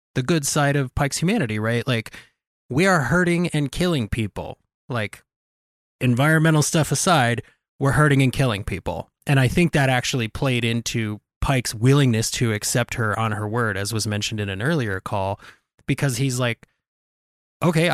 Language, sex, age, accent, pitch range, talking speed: English, male, 20-39, American, 110-155 Hz, 165 wpm